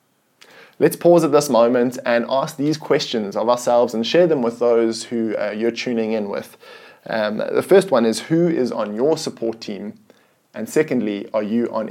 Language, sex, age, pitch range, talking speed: English, male, 20-39, 115-155 Hz, 190 wpm